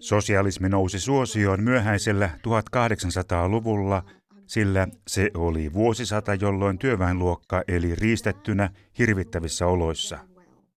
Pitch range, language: 95-115 Hz, Finnish